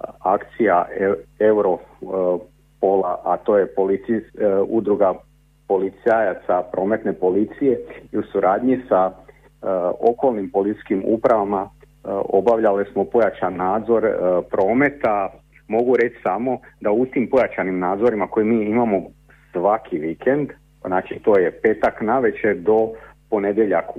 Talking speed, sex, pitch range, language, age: 105 wpm, male, 95-125 Hz, Croatian, 50-69